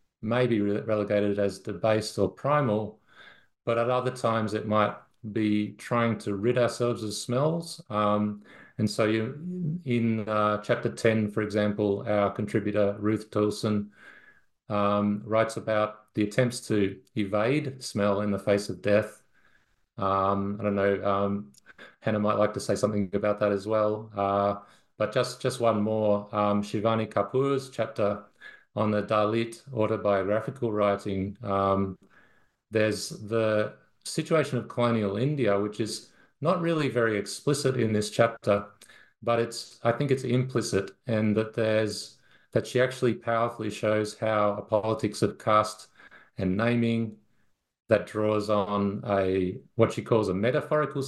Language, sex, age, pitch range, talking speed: English, male, 30-49, 105-120 Hz, 145 wpm